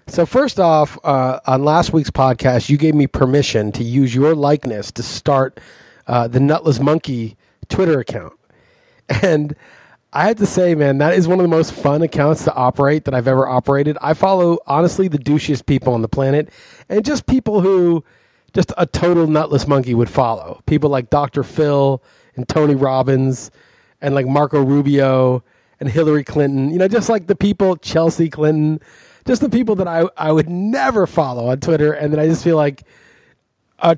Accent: American